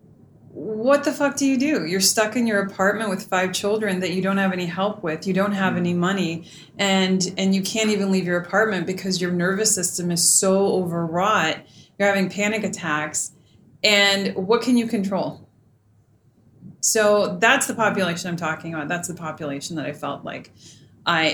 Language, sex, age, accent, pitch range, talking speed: English, female, 30-49, American, 160-200 Hz, 185 wpm